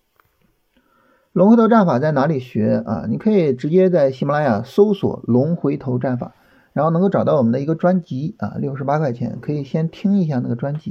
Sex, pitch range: male, 130-190 Hz